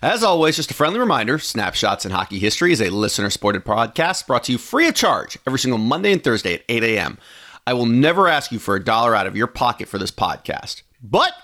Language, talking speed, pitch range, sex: English, 230 wpm, 105-150 Hz, male